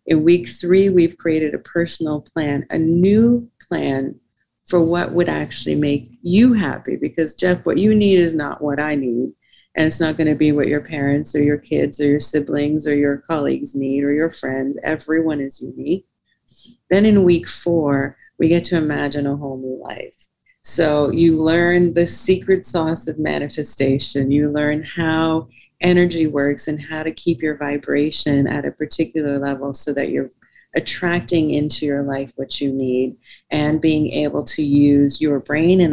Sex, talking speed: female, 175 wpm